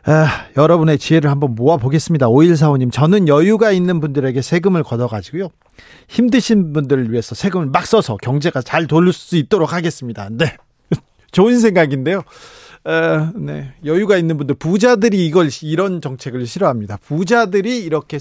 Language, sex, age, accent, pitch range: Korean, male, 40-59, native, 135-190 Hz